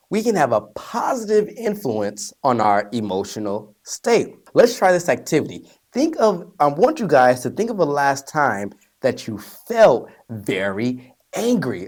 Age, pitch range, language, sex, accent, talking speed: 30-49, 120-190 Hz, English, male, American, 155 wpm